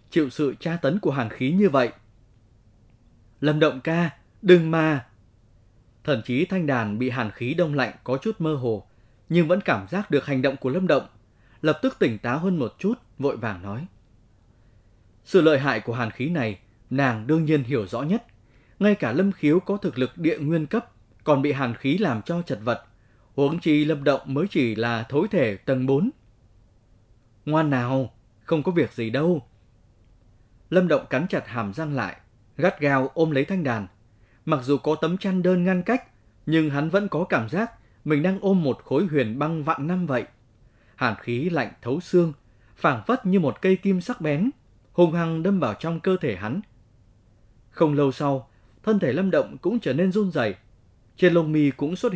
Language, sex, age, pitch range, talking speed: Vietnamese, male, 20-39, 115-170 Hz, 195 wpm